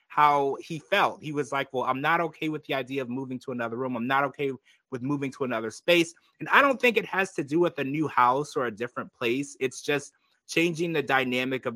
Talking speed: 245 wpm